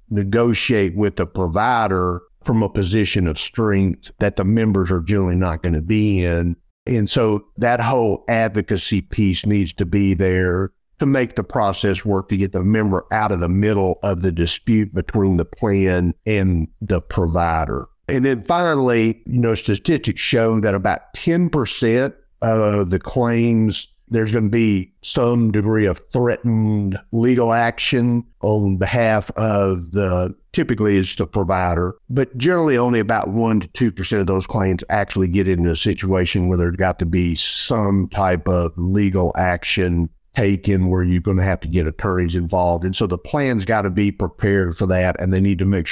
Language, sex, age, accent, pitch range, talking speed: English, male, 50-69, American, 90-115 Hz, 170 wpm